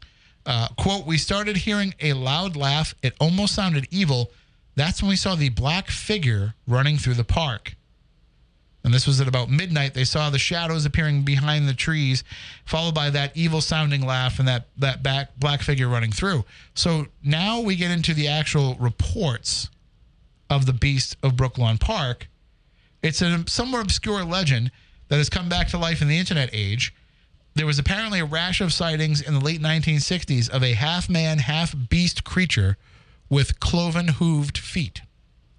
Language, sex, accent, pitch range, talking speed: English, male, American, 130-170 Hz, 165 wpm